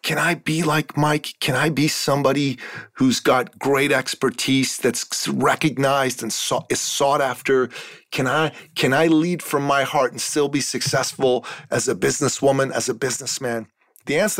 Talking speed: 160 wpm